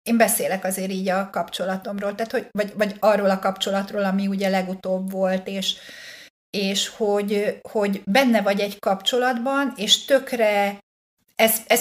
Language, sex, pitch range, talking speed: Hungarian, female, 200-235 Hz, 140 wpm